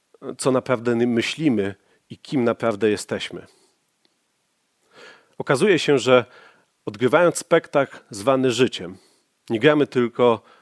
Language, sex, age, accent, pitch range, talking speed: Polish, male, 40-59, native, 115-145 Hz, 95 wpm